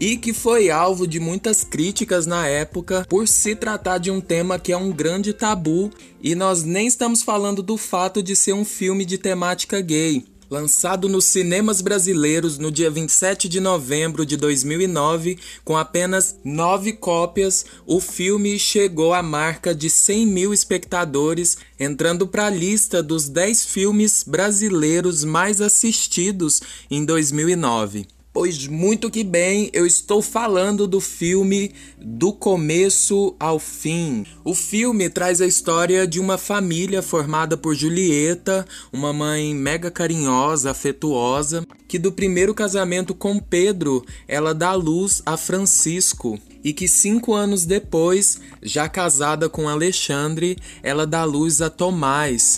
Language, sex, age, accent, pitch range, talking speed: Portuguese, male, 20-39, Brazilian, 160-195 Hz, 140 wpm